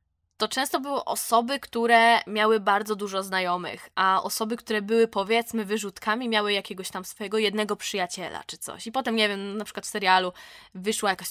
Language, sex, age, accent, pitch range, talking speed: Polish, female, 20-39, native, 200-255 Hz, 175 wpm